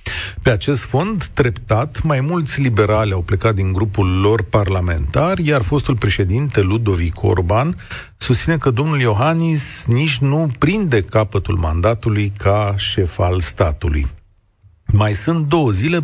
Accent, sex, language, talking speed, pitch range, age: native, male, Romanian, 130 wpm, 100-145 Hz, 40-59